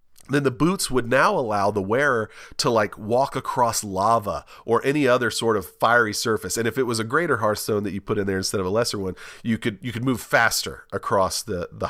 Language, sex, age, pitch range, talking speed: English, male, 40-59, 105-130 Hz, 230 wpm